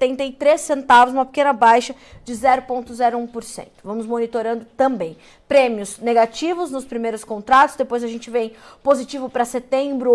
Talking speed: 130 wpm